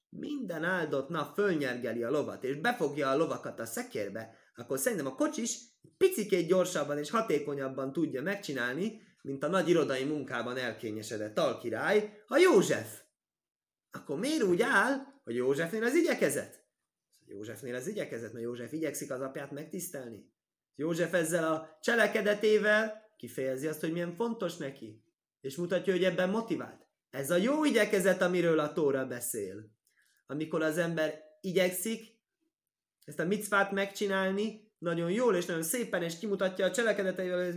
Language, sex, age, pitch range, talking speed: Hungarian, male, 20-39, 150-210 Hz, 145 wpm